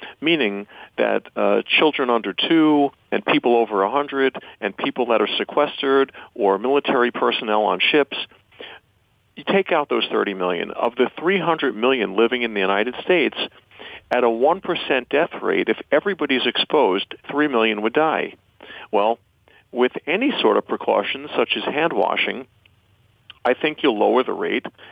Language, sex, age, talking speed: English, male, 40-59, 150 wpm